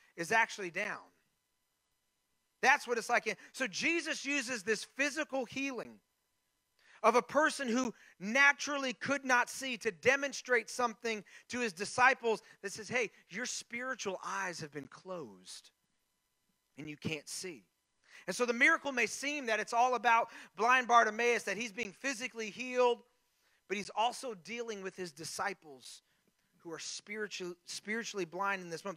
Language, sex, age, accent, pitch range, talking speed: English, male, 40-59, American, 190-255 Hz, 145 wpm